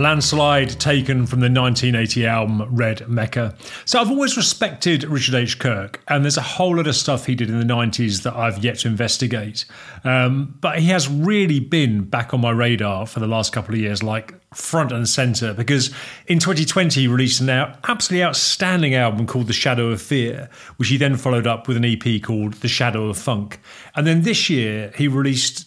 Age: 40-59